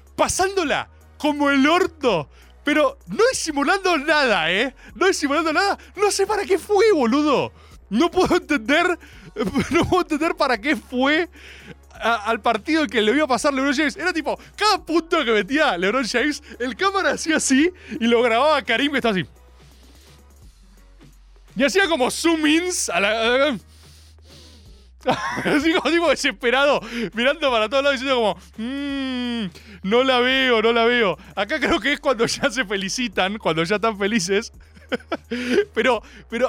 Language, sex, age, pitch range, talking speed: Spanish, male, 20-39, 210-300 Hz, 160 wpm